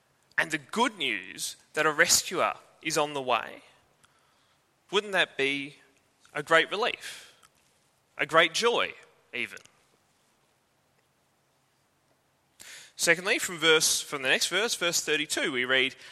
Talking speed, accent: 120 wpm, Australian